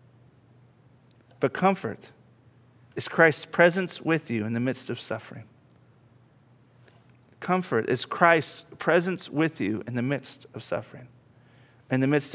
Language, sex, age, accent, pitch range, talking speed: English, male, 40-59, American, 120-145 Hz, 125 wpm